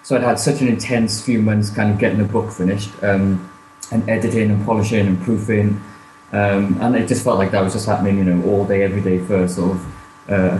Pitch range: 95-120 Hz